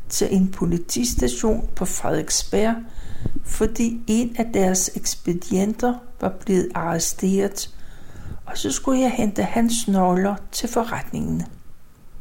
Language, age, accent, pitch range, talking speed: Danish, 60-79, native, 185-225 Hz, 110 wpm